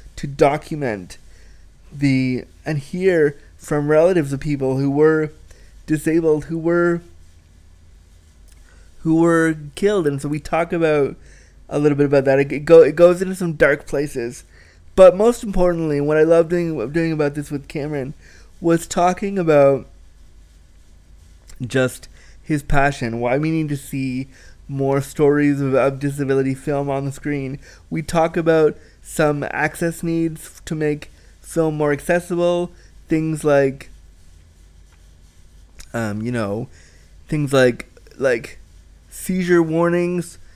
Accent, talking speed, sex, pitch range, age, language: American, 125 wpm, male, 115-165 Hz, 20-39, English